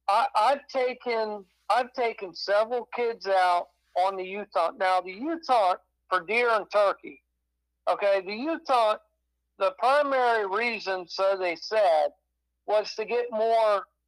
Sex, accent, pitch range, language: male, American, 185-235 Hz, English